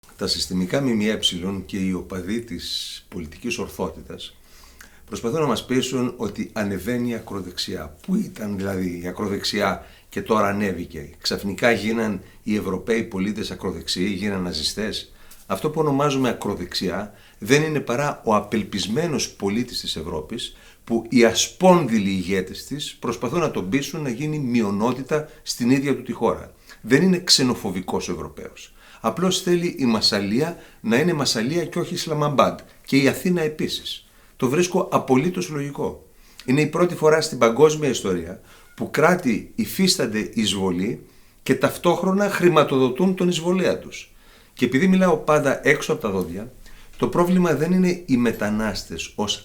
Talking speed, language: 140 wpm, Greek